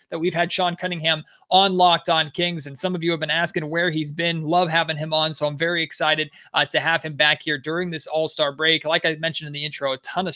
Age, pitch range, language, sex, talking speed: 20-39, 140-160 Hz, English, male, 265 wpm